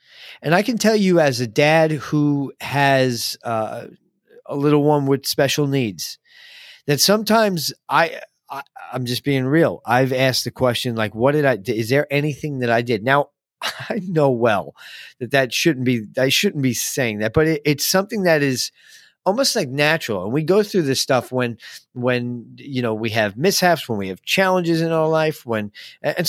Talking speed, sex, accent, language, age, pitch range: 185 wpm, male, American, English, 40-59, 125-175 Hz